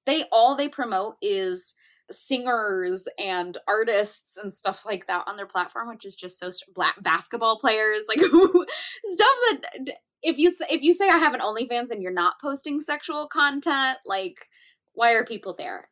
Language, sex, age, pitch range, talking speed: English, female, 10-29, 180-300 Hz, 170 wpm